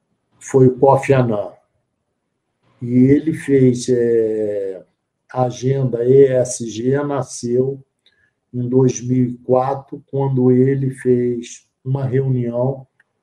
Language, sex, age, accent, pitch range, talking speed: Portuguese, male, 50-69, Brazilian, 120-140 Hz, 80 wpm